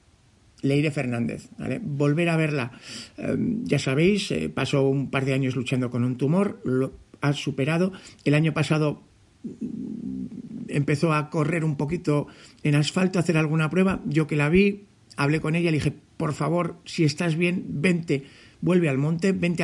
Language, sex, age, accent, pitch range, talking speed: Spanish, male, 50-69, Spanish, 135-175 Hz, 170 wpm